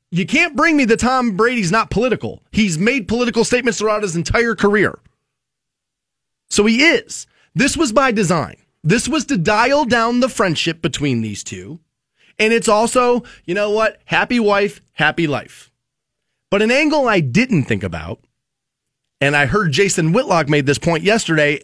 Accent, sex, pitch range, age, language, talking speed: American, male, 165-220 Hz, 30-49, English, 165 wpm